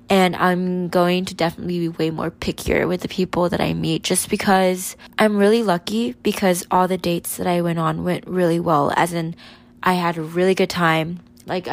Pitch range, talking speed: 170-195 Hz, 205 wpm